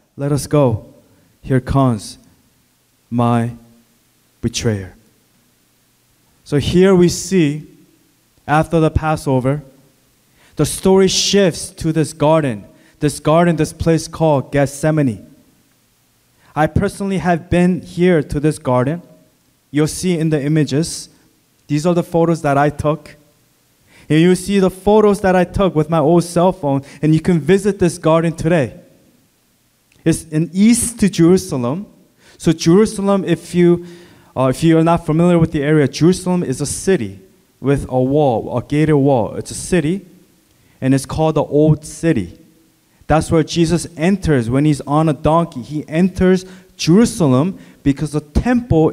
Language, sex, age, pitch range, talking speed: English, male, 20-39, 140-175 Hz, 145 wpm